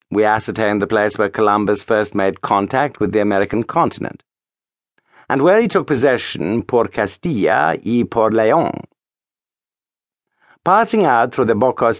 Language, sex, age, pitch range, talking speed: English, male, 60-79, 105-140 Hz, 140 wpm